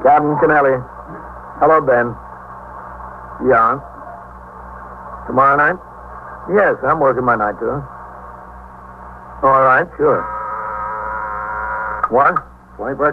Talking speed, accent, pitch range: 80 wpm, American, 105-140 Hz